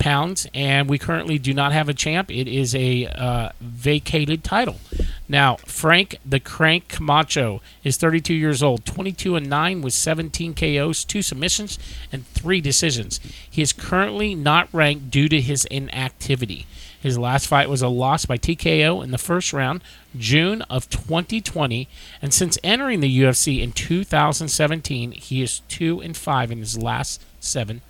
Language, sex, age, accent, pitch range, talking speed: English, male, 40-59, American, 125-160 Hz, 160 wpm